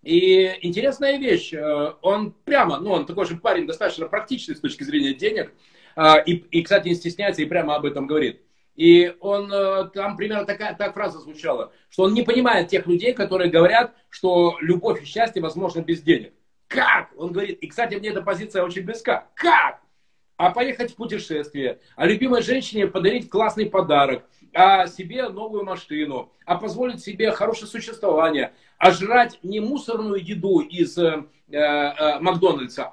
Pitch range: 170-220 Hz